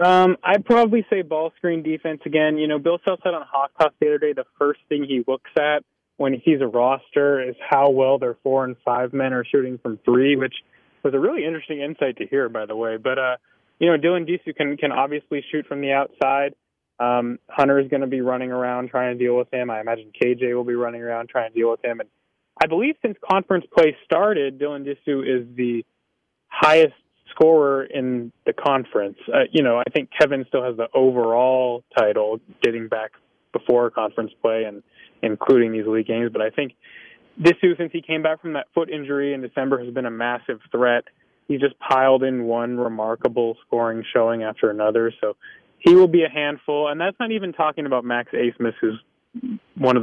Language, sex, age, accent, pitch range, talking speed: English, male, 20-39, American, 120-155 Hz, 205 wpm